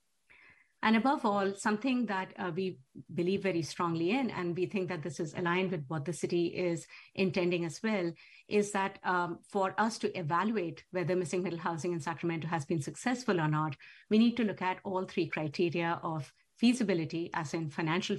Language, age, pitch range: English, 50-69, 165-200 Hz